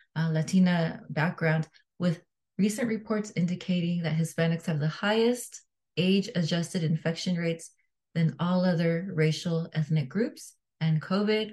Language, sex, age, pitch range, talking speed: English, female, 20-39, 160-190 Hz, 120 wpm